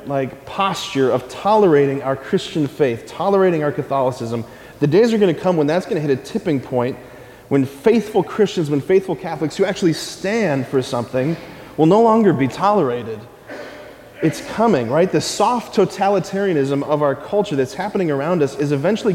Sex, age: male, 30-49